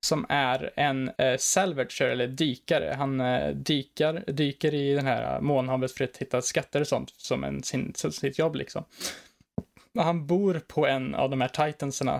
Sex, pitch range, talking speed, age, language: male, 130-160 Hz, 175 wpm, 20-39, Swedish